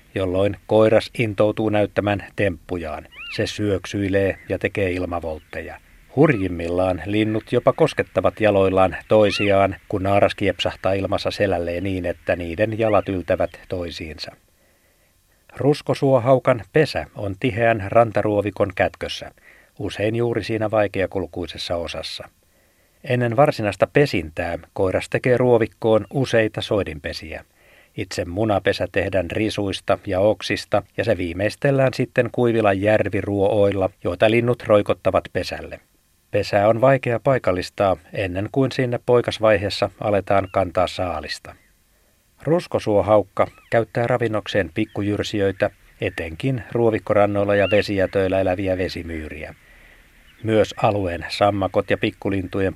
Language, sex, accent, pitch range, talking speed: Finnish, male, native, 95-115 Hz, 100 wpm